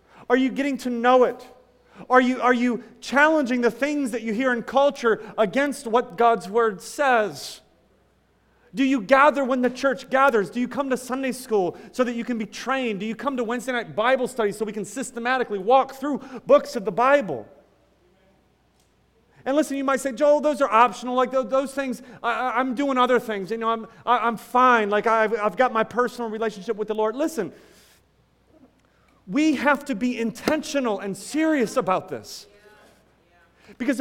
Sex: male